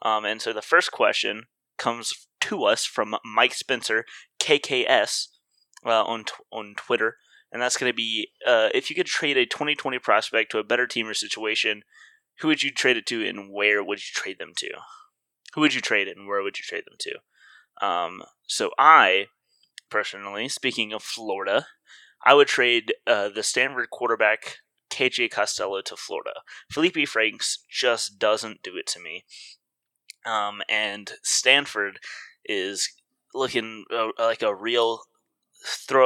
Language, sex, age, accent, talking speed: English, male, 20-39, American, 165 wpm